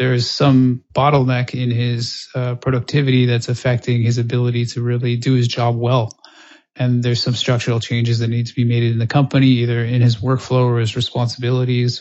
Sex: male